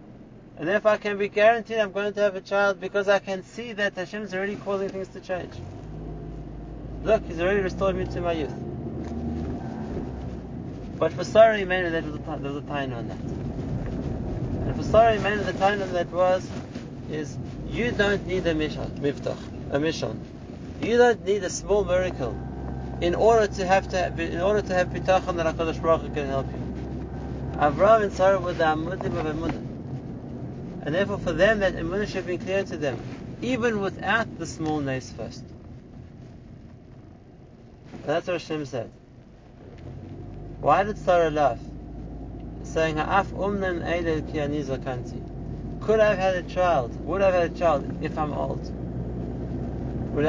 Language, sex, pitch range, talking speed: English, male, 130-195 Hz, 150 wpm